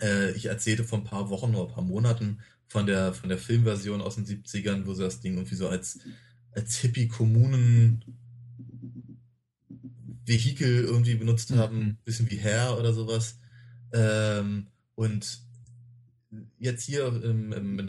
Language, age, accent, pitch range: German, 30-49, German, 95-120 Hz